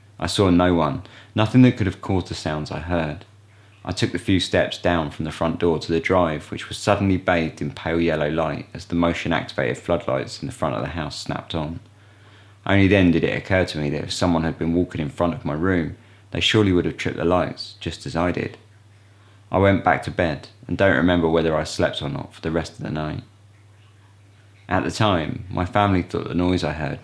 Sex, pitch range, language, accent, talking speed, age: male, 80-105 Hz, English, British, 230 wpm, 20-39